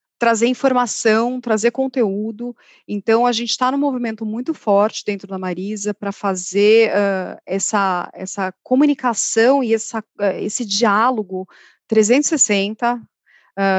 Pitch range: 195-235 Hz